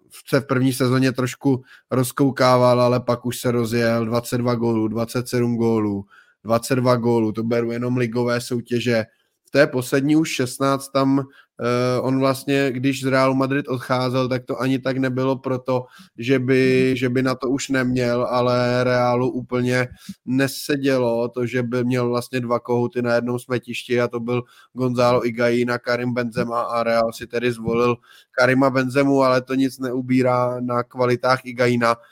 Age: 20-39